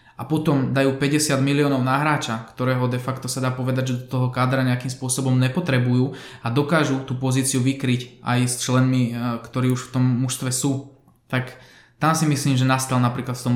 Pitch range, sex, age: 130-150 Hz, male, 20-39